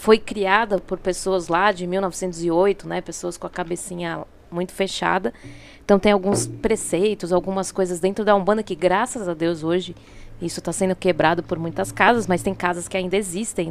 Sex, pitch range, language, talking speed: female, 180-215 Hz, Portuguese, 180 wpm